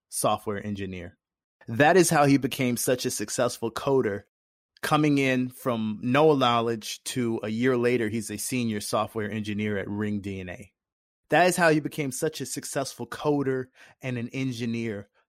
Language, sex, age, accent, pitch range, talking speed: English, male, 20-39, American, 115-145 Hz, 155 wpm